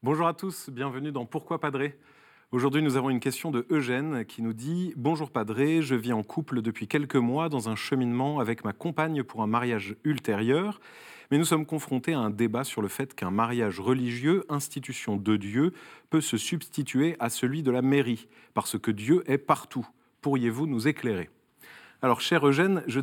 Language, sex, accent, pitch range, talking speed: French, male, French, 120-160 Hz, 195 wpm